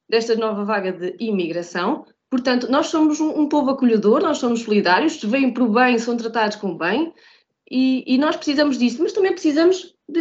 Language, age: Portuguese, 20-39